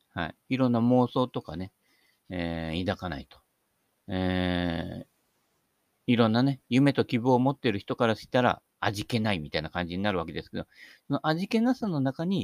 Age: 50-69